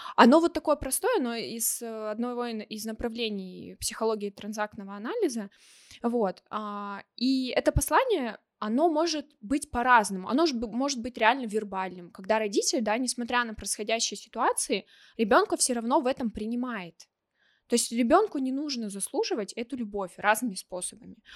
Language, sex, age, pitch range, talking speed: Russian, female, 20-39, 210-255 Hz, 140 wpm